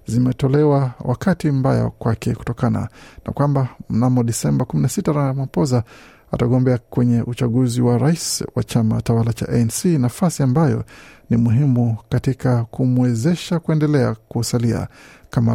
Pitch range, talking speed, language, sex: 115-140 Hz, 115 wpm, Swahili, male